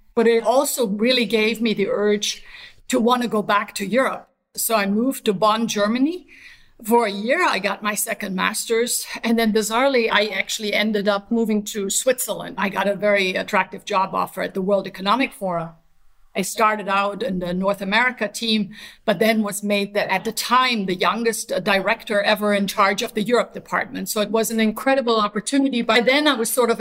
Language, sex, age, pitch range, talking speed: English, female, 50-69, 200-230 Hz, 200 wpm